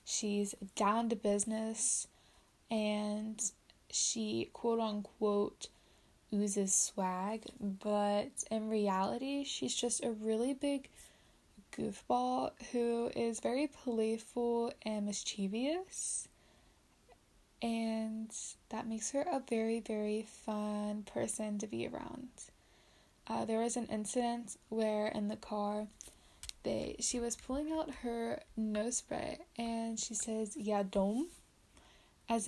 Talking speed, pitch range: 105 wpm, 210-240 Hz